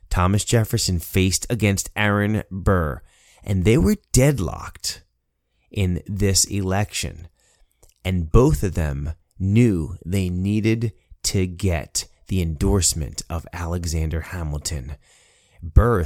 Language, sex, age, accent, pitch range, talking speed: English, male, 30-49, American, 85-105 Hz, 105 wpm